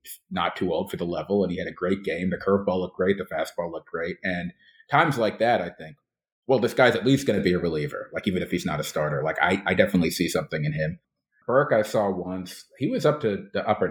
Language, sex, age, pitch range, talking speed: English, male, 30-49, 90-110 Hz, 265 wpm